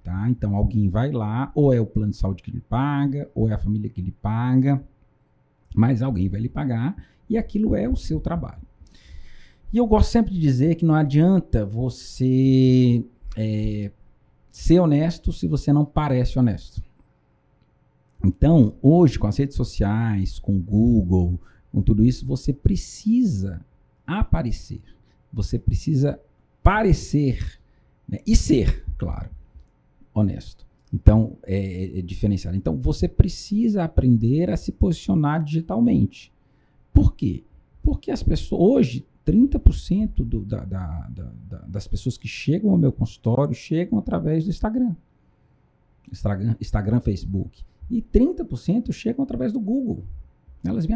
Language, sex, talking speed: Portuguese, male, 135 wpm